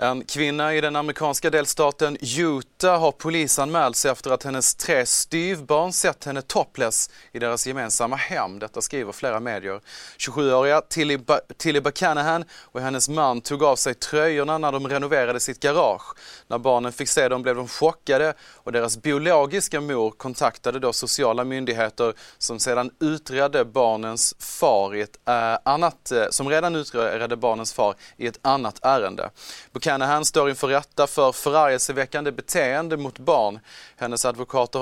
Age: 20-39